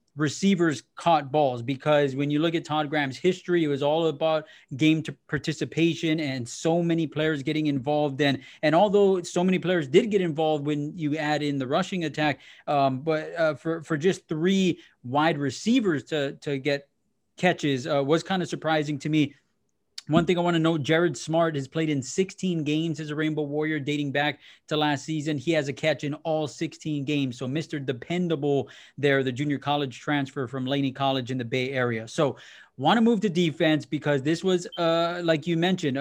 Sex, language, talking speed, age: male, English, 200 wpm, 20-39